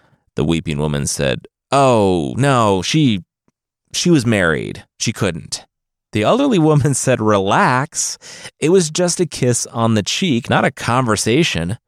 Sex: male